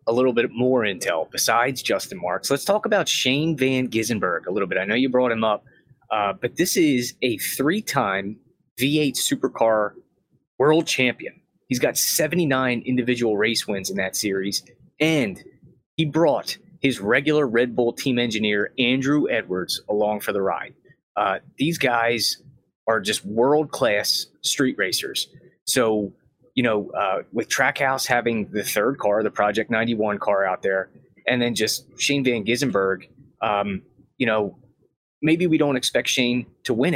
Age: 20-39